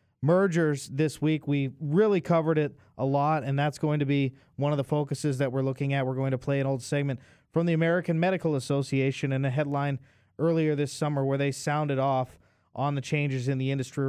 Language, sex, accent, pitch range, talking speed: English, male, American, 130-150 Hz, 215 wpm